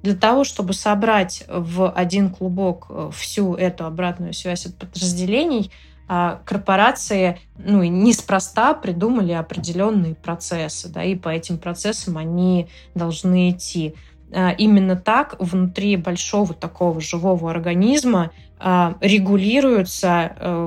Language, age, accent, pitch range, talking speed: Russian, 20-39, native, 170-200 Hz, 100 wpm